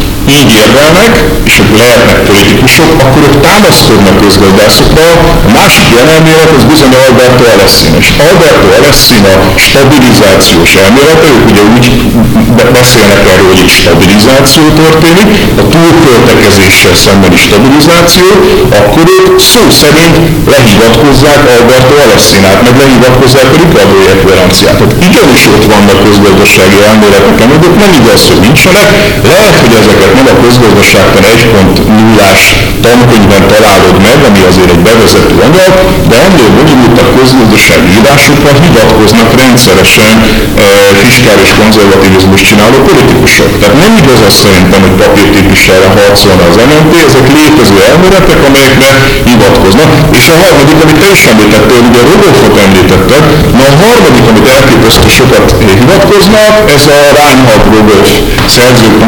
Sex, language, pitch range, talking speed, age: male, Hungarian, 100-145 Hz, 125 wpm, 50-69